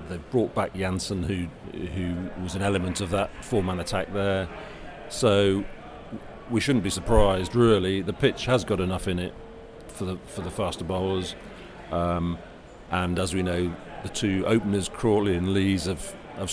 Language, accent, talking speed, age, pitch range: English, British, 165 wpm, 40-59, 85-100 Hz